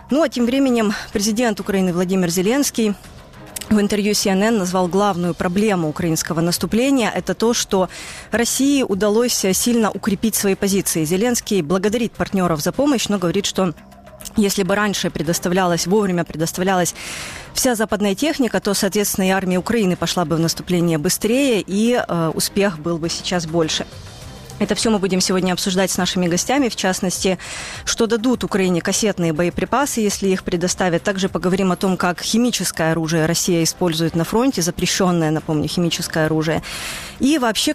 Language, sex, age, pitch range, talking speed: Ukrainian, female, 20-39, 175-215 Hz, 155 wpm